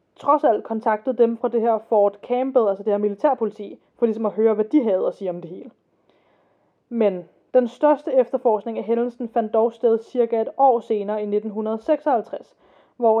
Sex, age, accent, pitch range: female, 20-39, native, 220-265 Hz